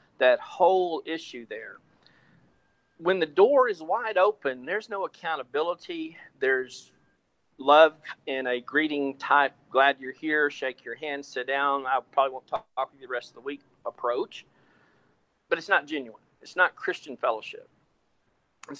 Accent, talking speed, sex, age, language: American, 155 wpm, male, 40-59, English